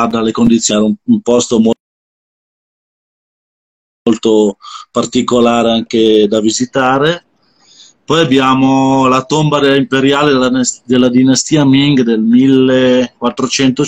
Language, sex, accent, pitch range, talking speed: Italian, male, native, 115-135 Hz, 80 wpm